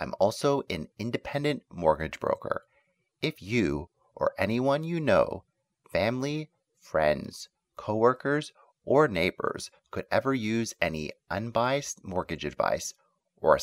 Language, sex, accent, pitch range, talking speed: English, male, American, 90-130 Hz, 115 wpm